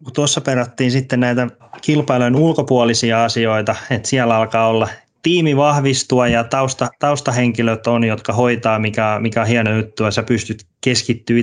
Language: Finnish